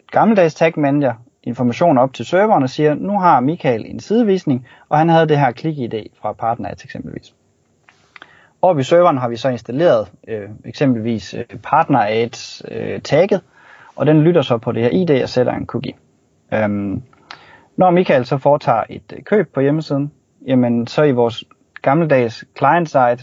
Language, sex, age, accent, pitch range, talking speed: Danish, male, 30-49, native, 120-155 Hz, 170 wpm